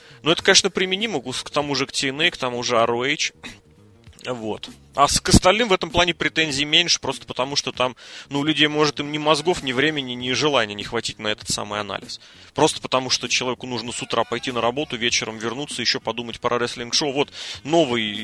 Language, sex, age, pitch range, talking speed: Russian, male, 30-49, 115-150 Hz, 200 wpm